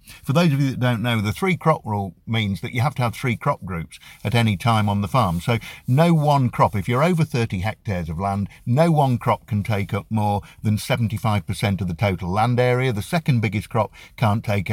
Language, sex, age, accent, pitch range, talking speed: English, male, 50-69, British, 100-130 Hz, 245 wpm